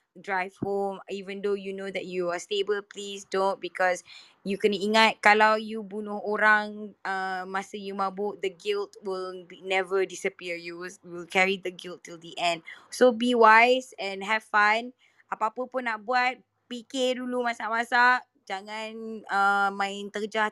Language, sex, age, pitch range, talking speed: Malay, female, 20-39, 195-240 Hz, 160 wpm